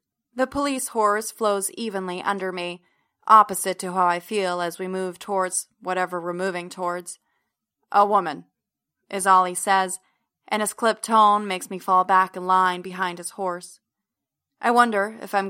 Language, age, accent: English, 20-39, American